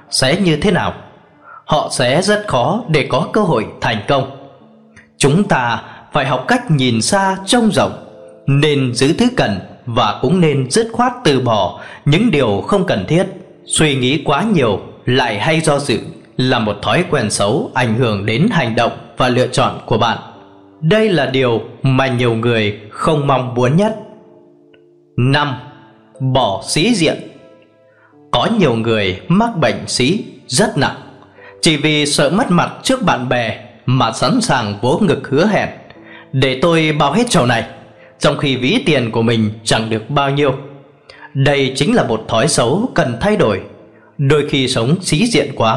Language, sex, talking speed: Vietnamese, male, 170 wpm